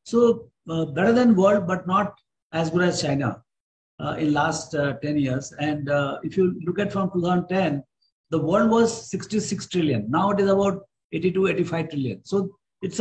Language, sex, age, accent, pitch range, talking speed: English, male, 60-79, Indian, 150-195 Hz, 185 wpm